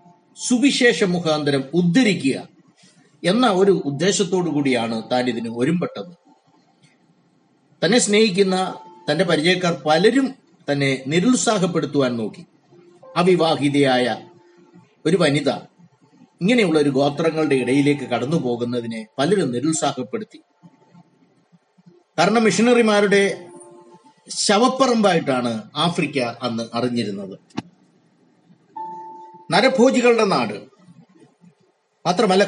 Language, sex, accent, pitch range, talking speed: Malayalam, male, native, 140-205 Hz, 65 wpm